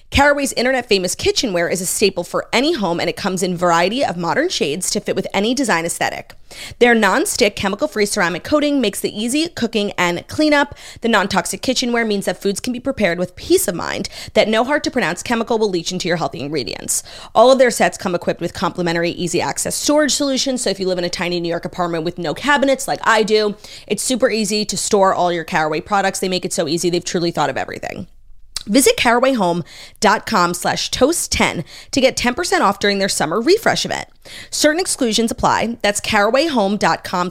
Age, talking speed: 30-49, 195 wpm